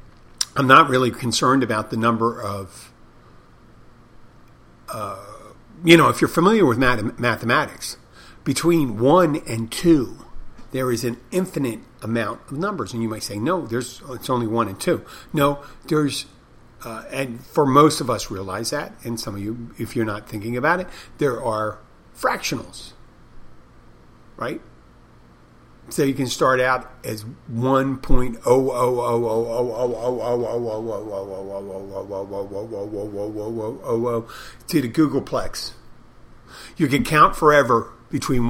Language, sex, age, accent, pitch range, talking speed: English, male, 50-69, American, 110-130 Hz, 120 wpm